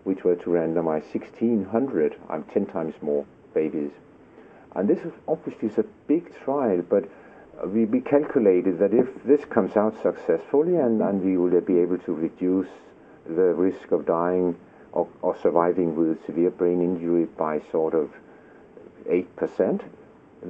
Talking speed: 150 wpm